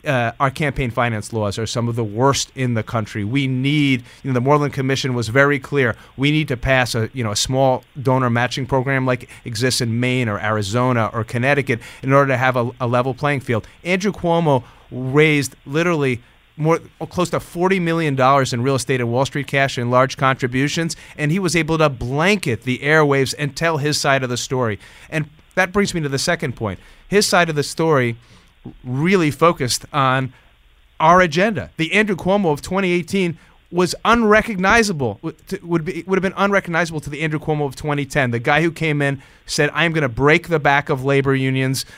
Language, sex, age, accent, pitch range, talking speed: English, male, 30-49, American, 125-155 Hz, 195 wpm